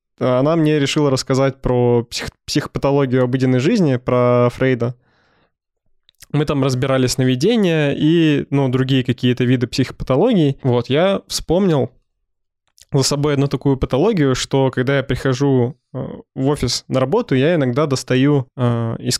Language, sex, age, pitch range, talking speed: Russian, male, 20-39, 125-140 Hz, 130 wpm